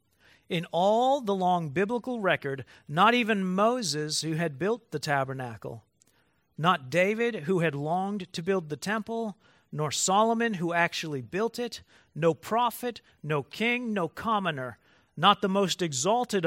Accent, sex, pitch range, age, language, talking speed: American, male, 155-215 Hz, 40-59, English, 140 wpm